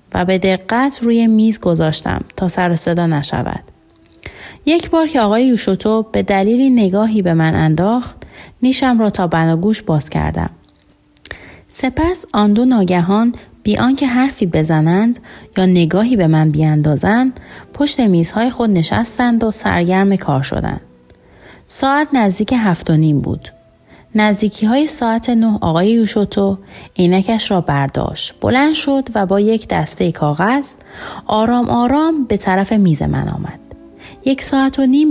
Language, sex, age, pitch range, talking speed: Persian, female, 30-49, 180-245 Hz, 140 wpm